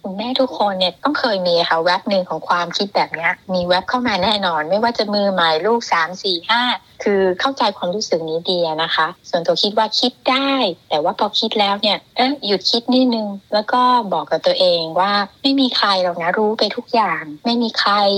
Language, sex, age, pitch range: Thai, female, 60-79, 180-230 Hz